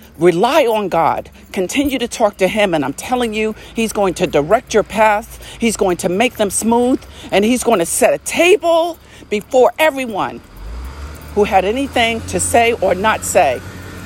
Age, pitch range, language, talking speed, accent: 50-69, 175-230 Hz, English, 175 wpm, American